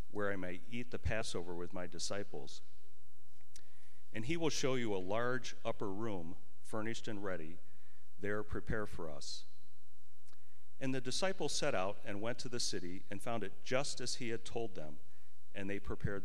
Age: 40-59